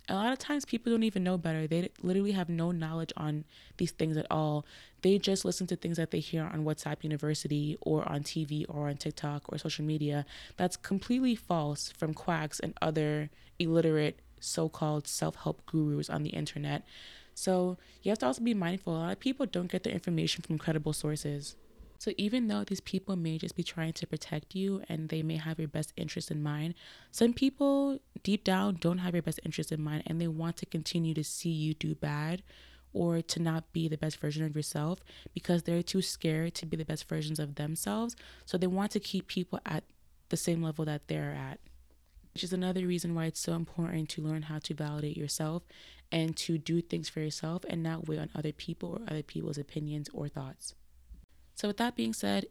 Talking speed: 210 wpm